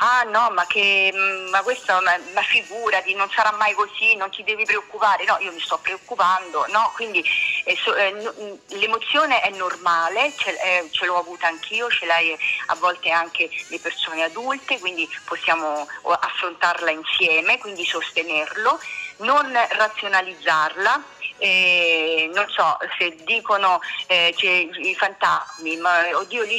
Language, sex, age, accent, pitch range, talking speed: Italian, female, 40-59, native, 165-215 Hz, 145 wpm